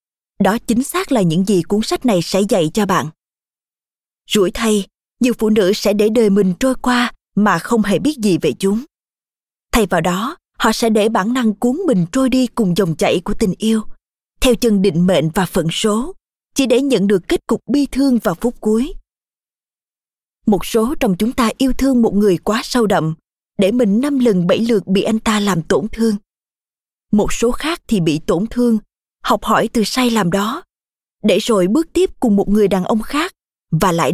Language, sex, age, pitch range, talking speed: Vietnamese, female, 20-39, 195-245 Hz, 205 wpm